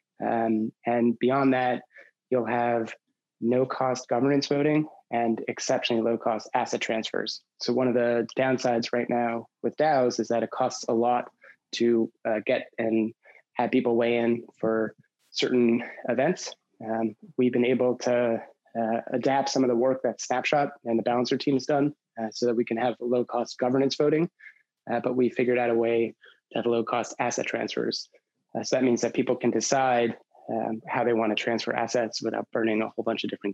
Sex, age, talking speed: male, 20-39, 190 wpm